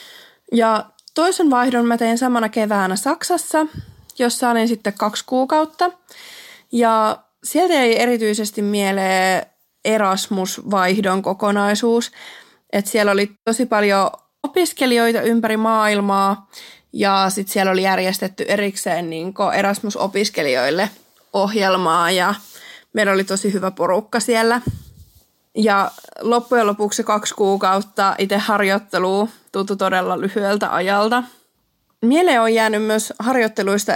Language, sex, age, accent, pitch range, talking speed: Finnish, female, 20-39, native, 195-230 Hz, 100 wpm